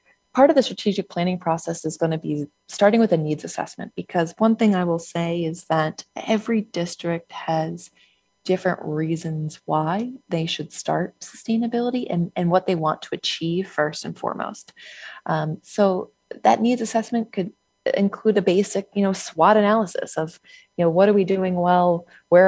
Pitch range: 160-210 Hz